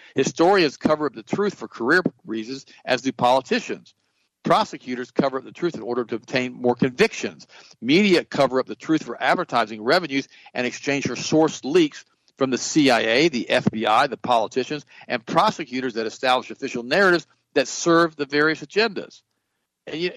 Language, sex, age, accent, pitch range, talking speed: English, male, 50-69, American, 120-165 Hz, 165 wpm